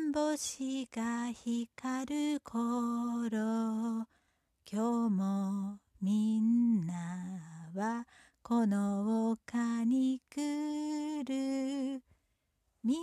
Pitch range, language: 235-320 Hz, Japanese